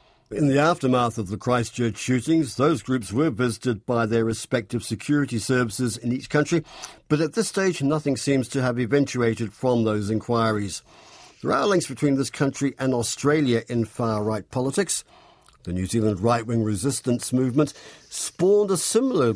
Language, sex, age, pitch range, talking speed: English, male, 50-69, 115-150 Hz, 160 wpm